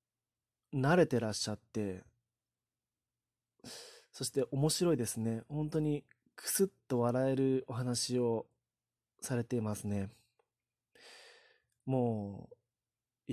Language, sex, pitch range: Japanese, male, 115-140 Hz